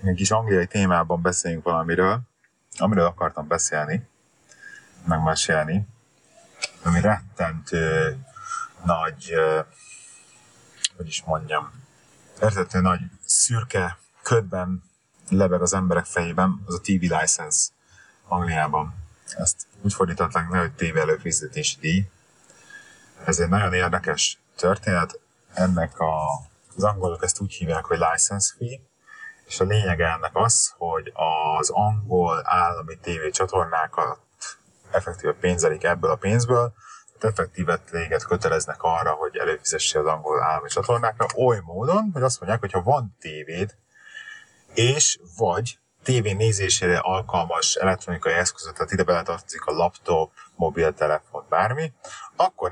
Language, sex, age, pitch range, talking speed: Hungarian, male, 30-49, 85-125 Hz, 115 wpm